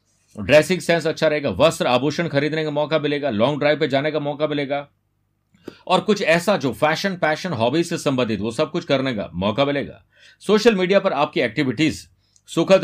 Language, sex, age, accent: Hindi, male, 50-69, native